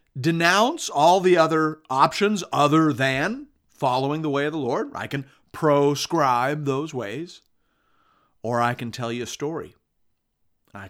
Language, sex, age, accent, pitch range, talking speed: English, male, 50-69, American, 125-190 Hz, 145 wpm